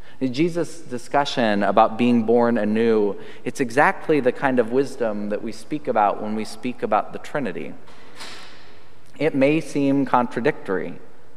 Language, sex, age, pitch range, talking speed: English, male, 30-49, 105-135 Hz, 135 wpm